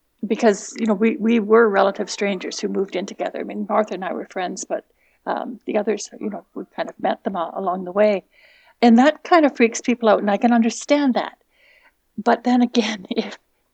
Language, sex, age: English, female, 60-79